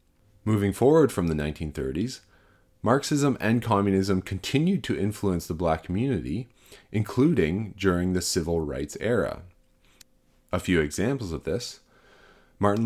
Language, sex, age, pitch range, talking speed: English, male, 30-49, 85-115 Hz, 120 wpm